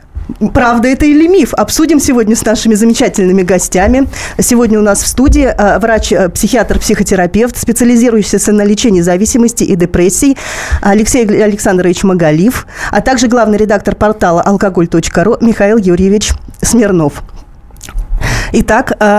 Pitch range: 195-235 Hz